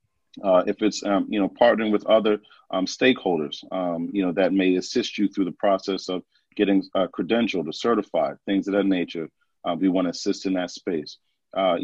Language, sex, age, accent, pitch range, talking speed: English, male, 40-59, American, 90-100 Hz, 205 wpm